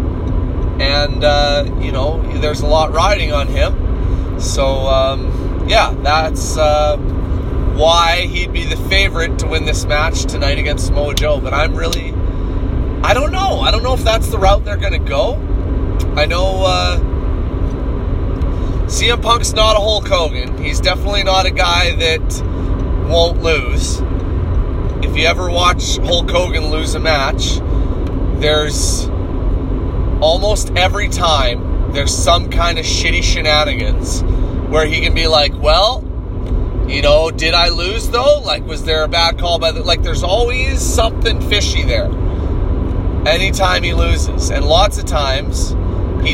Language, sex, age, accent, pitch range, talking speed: English, male, 30-49, American, 85-95 Hz, 150 wpm